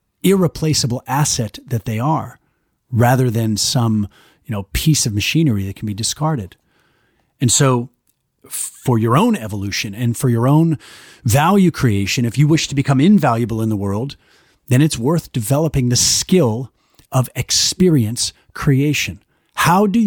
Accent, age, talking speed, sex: American, 40-59, 145 wpm, male